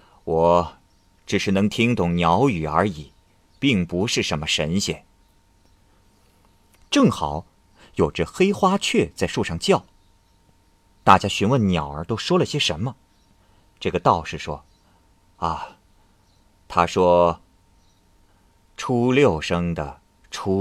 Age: 30-49